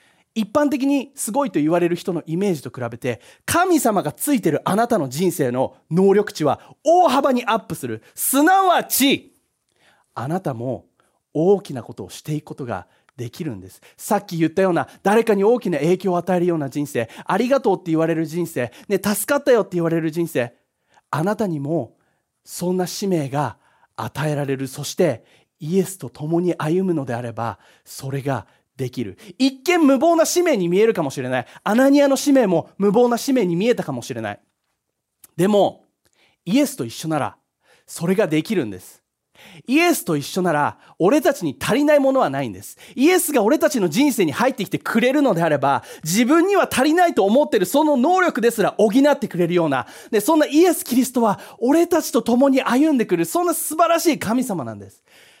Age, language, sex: 30-49, English, male